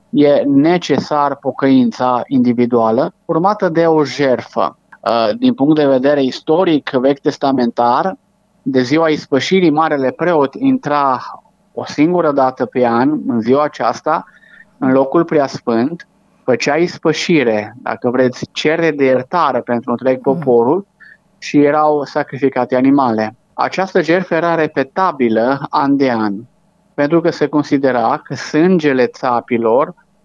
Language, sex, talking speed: Romanian, male, 120 wpm